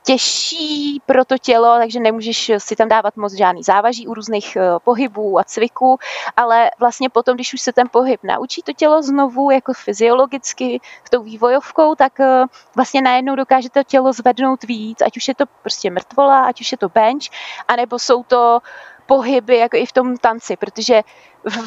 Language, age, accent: Czech, 20-39, native